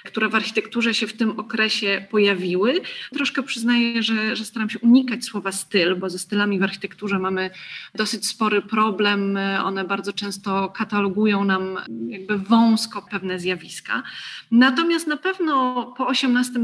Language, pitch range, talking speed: Polish, 195-225 Hz, 145 wpm